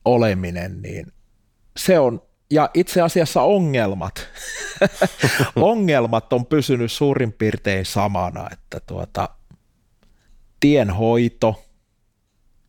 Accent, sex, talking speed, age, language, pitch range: native, male, 80 wpm, 30-49, Finnish, 100-130 Hz